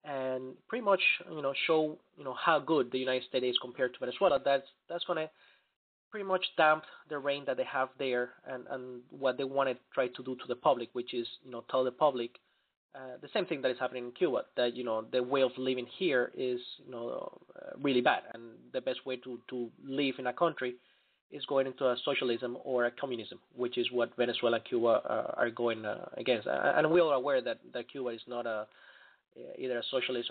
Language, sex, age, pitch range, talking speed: English, male, 20-39, 125-140 Hz, 225 wpm